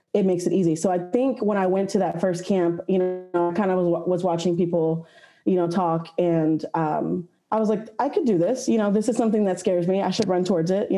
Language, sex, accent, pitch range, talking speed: English, female, American, 175-205 Hz, 270 wpm